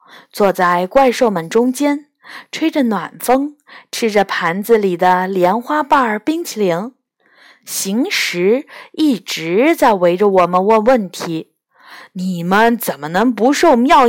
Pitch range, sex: 190-295 Hz, female